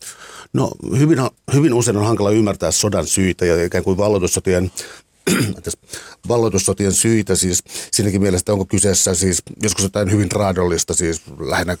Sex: male